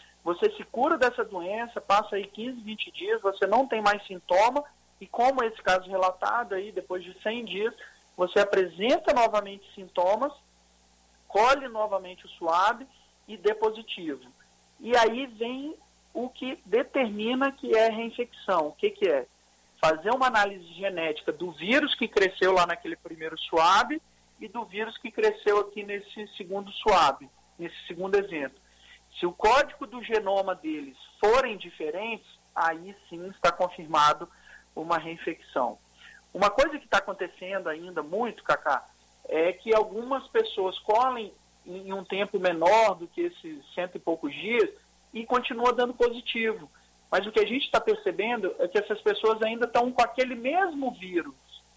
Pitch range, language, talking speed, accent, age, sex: 185-250 Hz, Portuguese, 155 wpm, Brazilian, 50-69, male